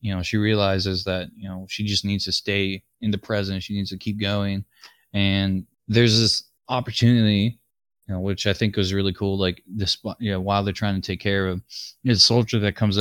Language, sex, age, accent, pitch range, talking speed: English, male, 20-39, American, 95-110 Hz, 215 wpm